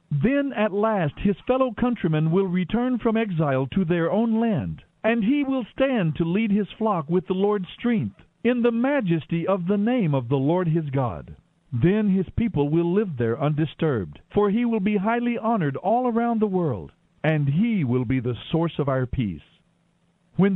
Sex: male